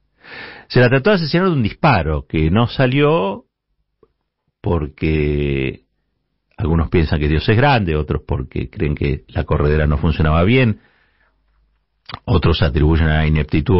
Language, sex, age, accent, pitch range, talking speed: Spanish, male, 50-69, Argentinian, 80-120 Hz, 140 wpm